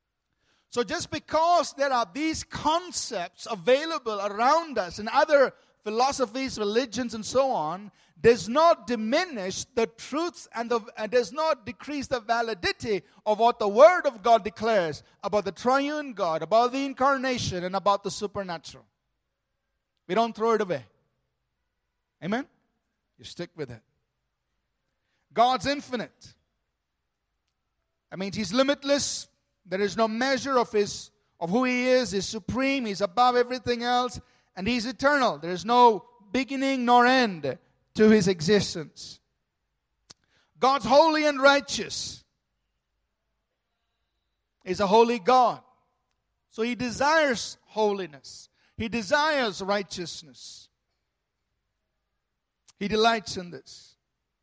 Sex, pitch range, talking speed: male, 200-270 Hz, 120 wpm